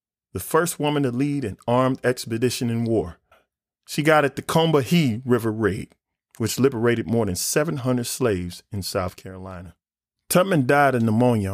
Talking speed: 155 wpm